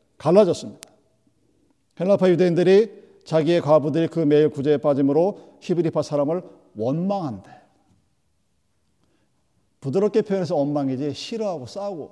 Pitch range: 160-210 Hz